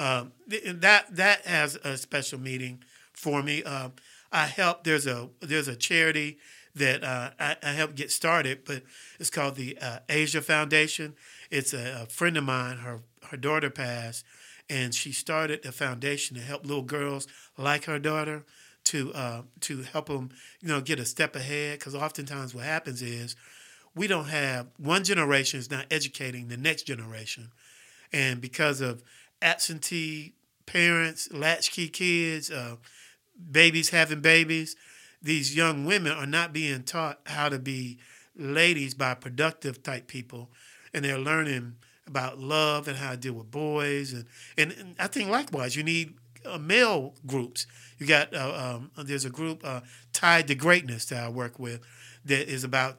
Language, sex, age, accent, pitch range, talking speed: English, male, 50-69, American, 130-155 Hz, 165 wpm